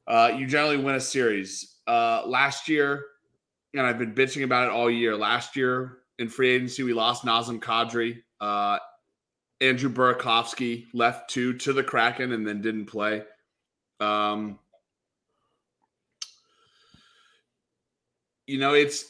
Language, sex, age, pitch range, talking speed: English, male, 30-49, 110-135 Hz, 130 wpm